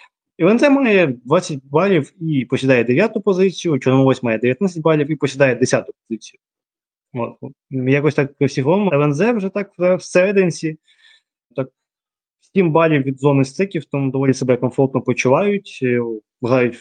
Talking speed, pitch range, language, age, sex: 130 wpm, 120-150 Hz, Ukrainian, 20-39, male